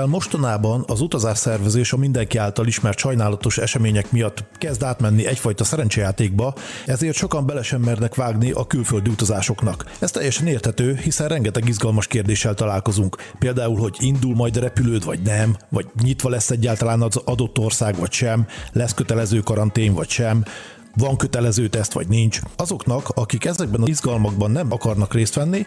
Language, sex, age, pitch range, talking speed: Hungarian, male, 40-59, 110-135 Hz, 155 wpm